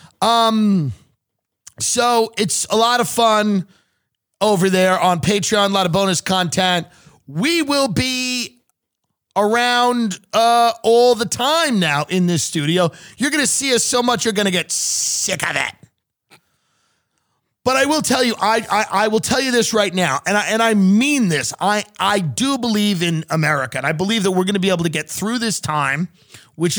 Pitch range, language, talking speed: 150-210 Hz, English, 185 wpm